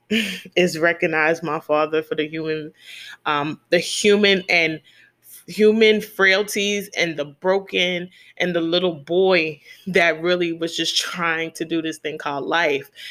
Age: 20-39